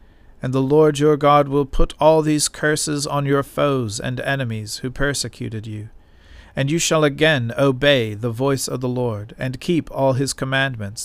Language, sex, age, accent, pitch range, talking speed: English, male, 50-69, American, 110-140 Hz, 180 wpm